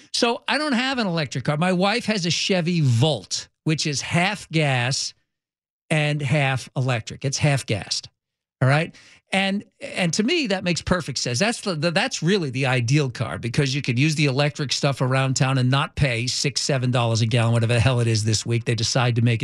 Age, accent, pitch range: 50-69, American, 130-175 Hz